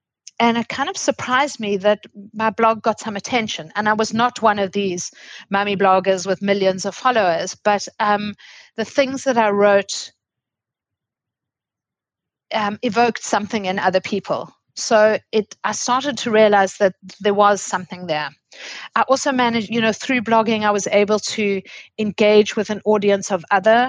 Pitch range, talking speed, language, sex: 190-225 Hz, 165 wpm, English, female